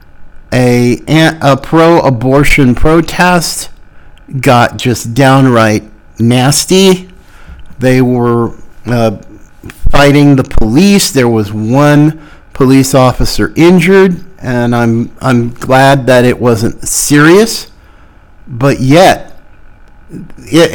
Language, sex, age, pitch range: English, male, 50-69, 125-165 Hz